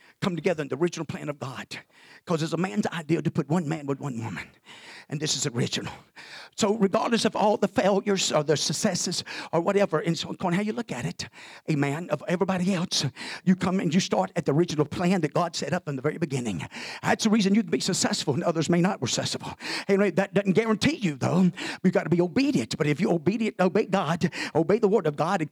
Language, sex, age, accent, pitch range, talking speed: English, male, 50-69, American, 170-215 Hz, 240 wpm